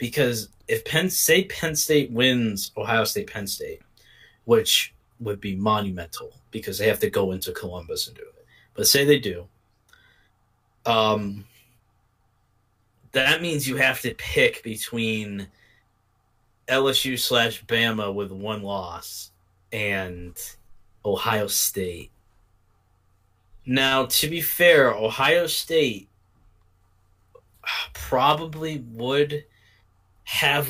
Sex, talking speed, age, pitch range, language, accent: male, 110 wpm, 20-39, 95-130 Hz, English, American